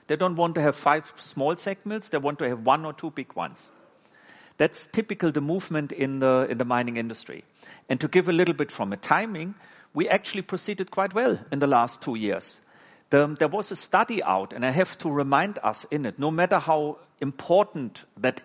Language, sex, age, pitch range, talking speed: English, male, 50-69, 140-185 Hz, 210 wpm